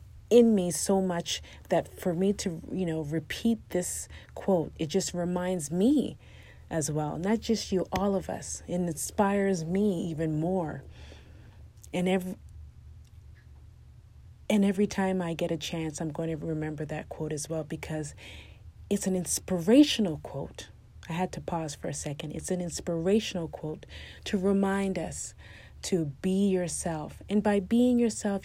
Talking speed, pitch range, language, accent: 155 wpm, 155-195 Hz, English, American